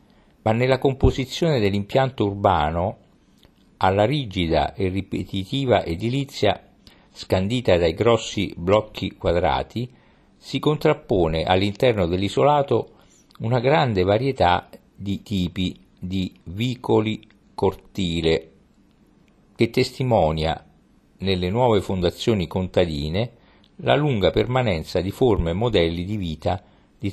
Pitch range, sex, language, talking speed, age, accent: 85-115 Hz, male, Italian, 95 wpm, 50-69, native